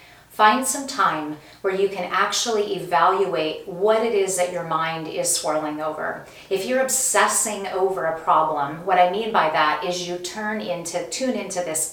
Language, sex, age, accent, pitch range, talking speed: English, female, 30-49, American, 165-220 Hz, 175 wpm